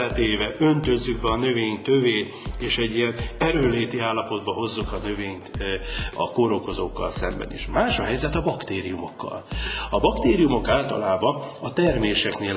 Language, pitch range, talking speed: Hungarian, 100-125 Hz, 125 wpm